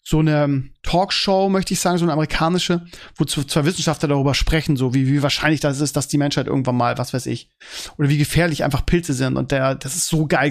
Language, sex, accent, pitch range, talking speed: German, male, German, 145-170 Hz, 230 wpm